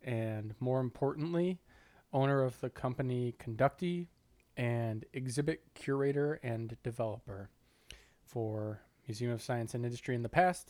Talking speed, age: 125 wpm, 20-39